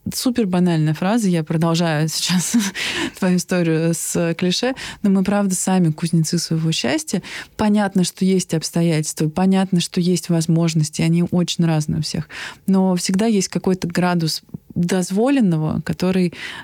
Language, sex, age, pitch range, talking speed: Russian, female, 20-39, 170-200 Hz, 135 wpm